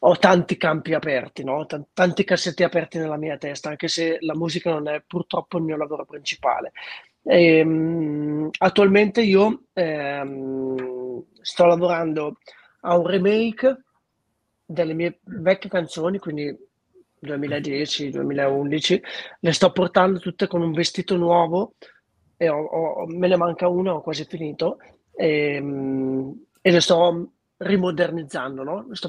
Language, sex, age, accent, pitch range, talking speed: Italian, male, 30-49, native, 150-185 Hz, 135 wpm